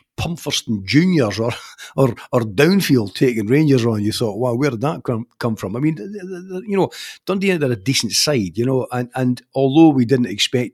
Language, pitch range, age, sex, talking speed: English, 110-130 Hz, 50-69, male, 195 wpm